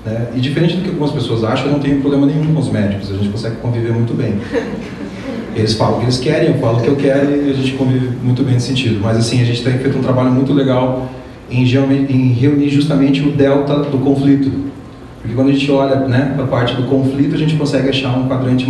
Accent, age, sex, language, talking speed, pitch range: Brazilian, 30-49, male, Portuguese, 250 wpm, 120-140 Hz